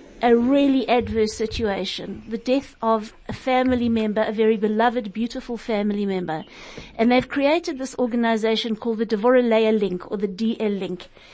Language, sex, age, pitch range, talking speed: English, female, 50-69, 220-250 Hz, 155 wpm